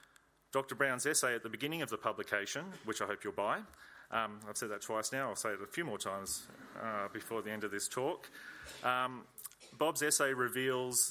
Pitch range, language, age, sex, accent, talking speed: 105-120 Hz, English, 30-49, male, Australian, 205 wpm